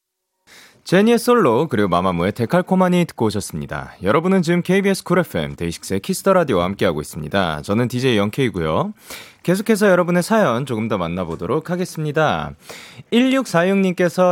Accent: native